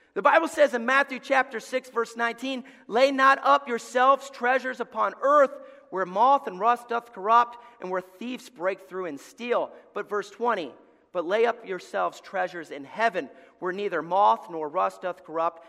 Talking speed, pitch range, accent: 175 wpm, 185-270 Hz, American